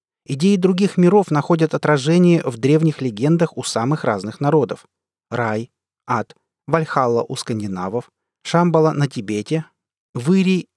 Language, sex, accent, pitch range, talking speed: Russian, male, native, 125-170 Hz, 115 wpm